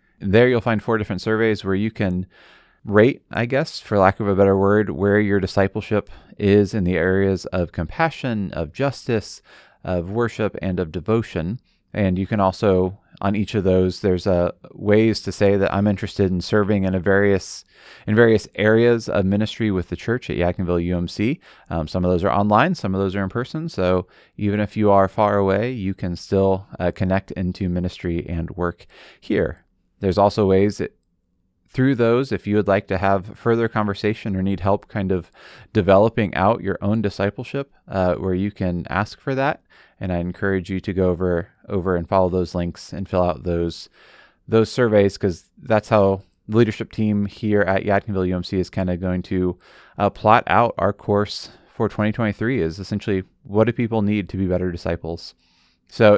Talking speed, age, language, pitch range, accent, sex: 190 wpm, 30-49, English, 90-105 Hz, American, male